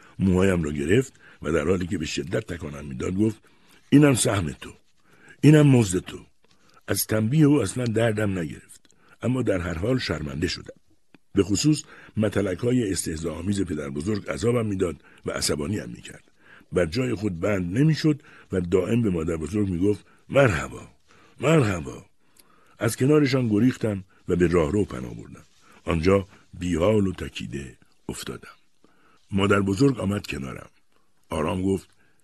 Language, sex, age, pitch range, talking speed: Persian, male, 60-79, 85-120 Hz, 145 wpm